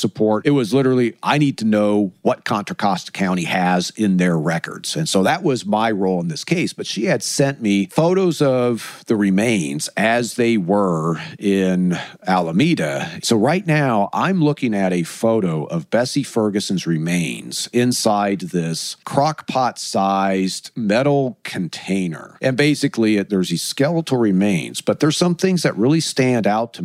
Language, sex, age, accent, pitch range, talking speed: English, male, 50-69, American, 95-140 Hz, 160 wpm